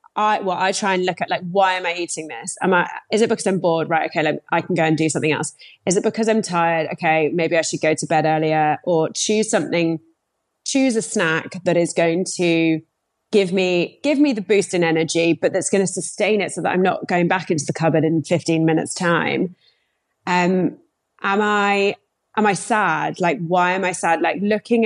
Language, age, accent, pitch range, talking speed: English, 30-49, British, 165-205 Hz, 225 wpm